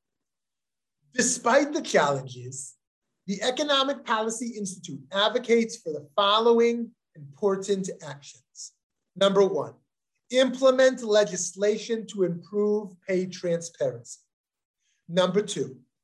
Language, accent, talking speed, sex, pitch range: English, American, 85 wpm, male, 155-235 Hz